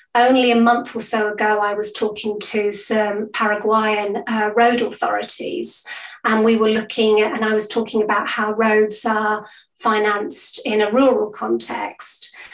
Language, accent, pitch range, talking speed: English, British, 215-235 Hz, 160 wpm